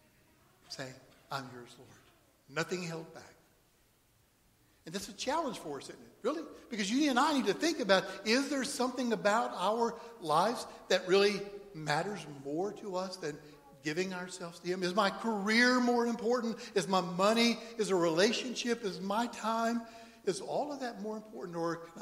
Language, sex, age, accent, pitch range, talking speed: English, male, 60-79, American, 160-230 Hz, 170 wpm